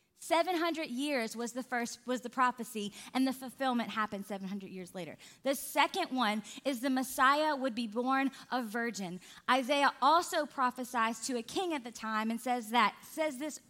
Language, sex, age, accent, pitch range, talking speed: English, female, 20-39, American, 235-275 Hz, 185 wpm